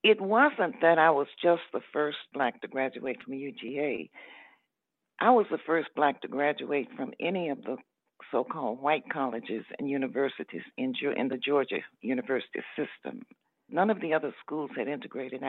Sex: female